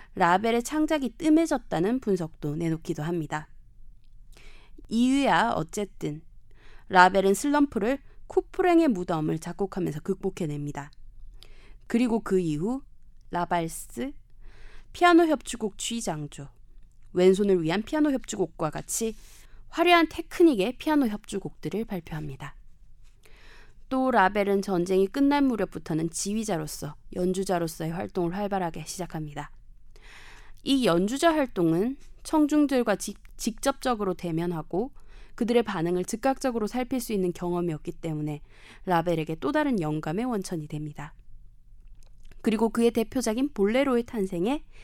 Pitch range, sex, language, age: 160-240 Hz, female, Korean, 20-39